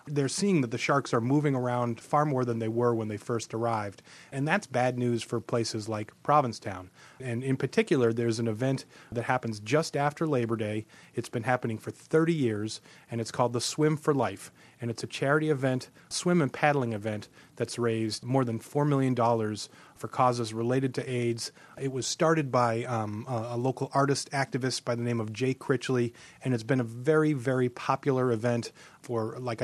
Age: 30-49